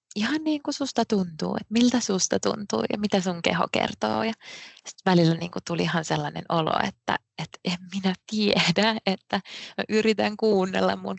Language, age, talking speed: English, 20-39, 155 wpm